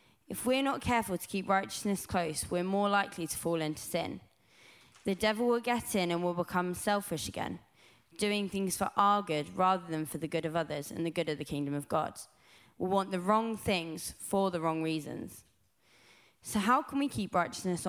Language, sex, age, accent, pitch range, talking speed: English, female, 20-39, British, 170-210 Hz, 205 wpm